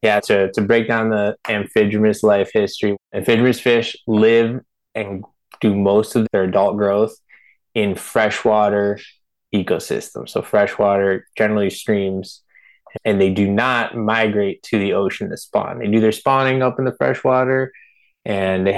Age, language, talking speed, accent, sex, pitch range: 20-39, English, 145 wpm, American, male, 100-110 Hz